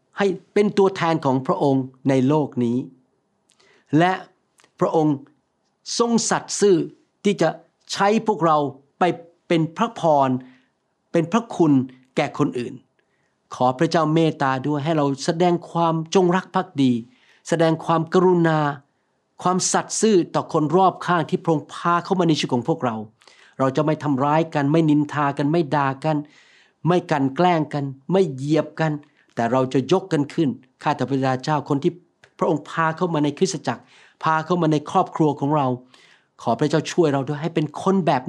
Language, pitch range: Thai, 135-175 Hz